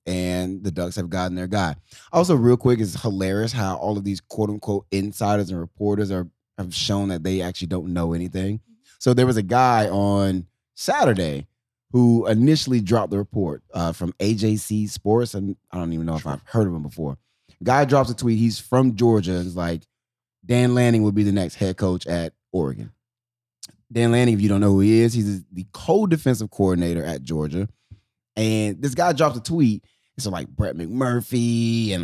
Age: 20-39